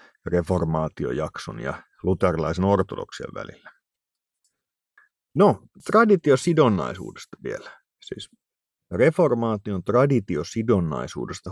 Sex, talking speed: male, 55 wpm